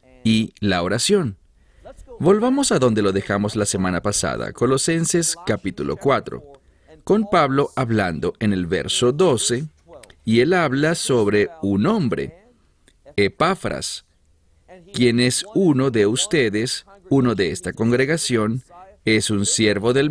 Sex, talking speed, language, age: male, 120 wpm, English, 40-59